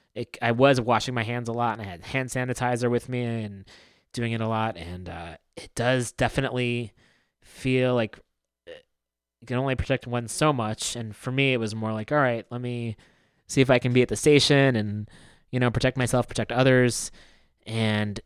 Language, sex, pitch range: English, male, 110-130 Hz